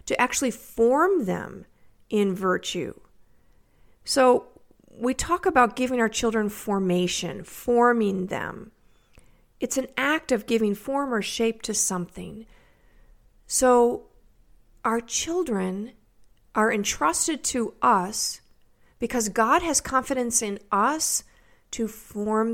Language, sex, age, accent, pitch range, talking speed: English, female, 50-69, American, 205-250 Hz, 110 wpm